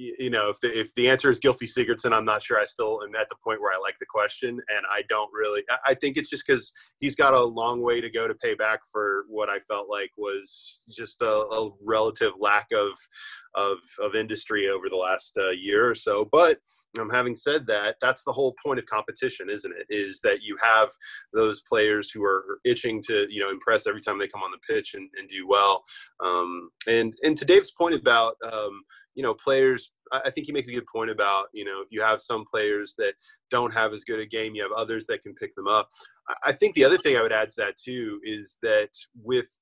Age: 20-39